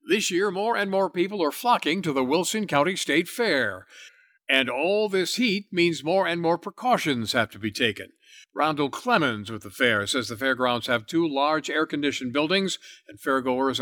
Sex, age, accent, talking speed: male, 60-79, American, 180 wpm